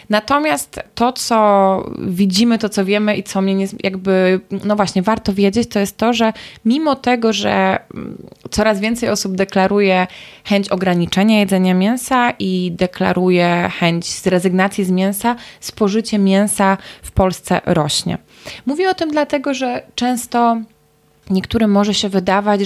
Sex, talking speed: female, 140 wpm